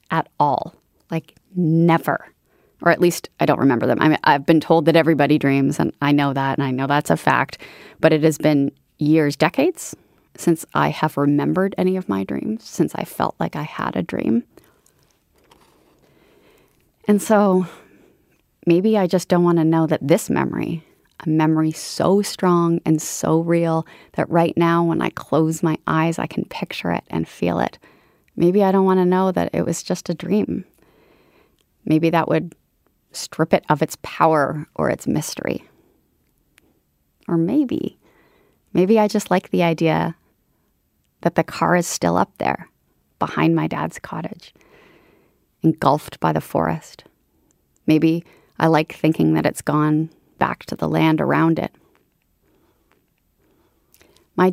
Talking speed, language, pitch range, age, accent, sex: 160 wpm, English, 155-180 Hz, 30-49, American, female